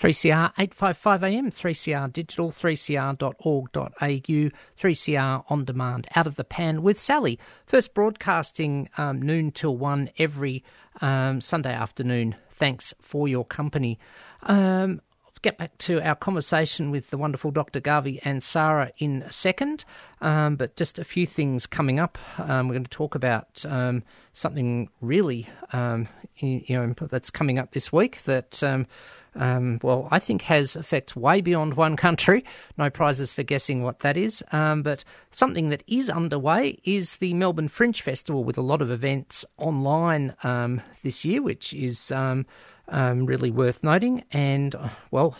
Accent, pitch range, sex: Australian, 130-165 Hz, male